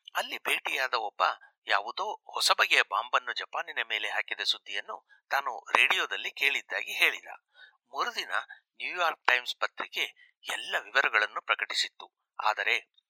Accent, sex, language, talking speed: native, male, Kannada, 100 wpm